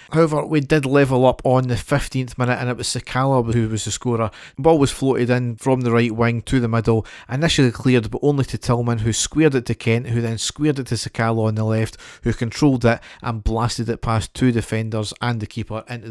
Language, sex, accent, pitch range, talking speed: English, male, British, 115-130 Hz, 225 wpm